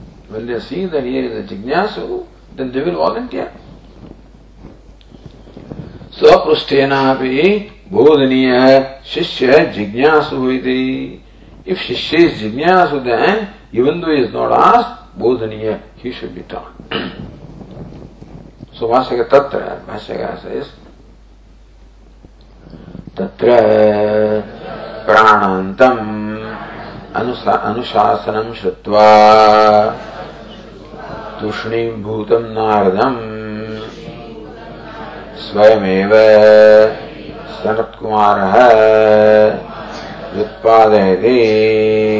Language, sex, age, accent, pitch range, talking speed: English, male, 50-69, Indian, 105-115 Hz, 75 wpm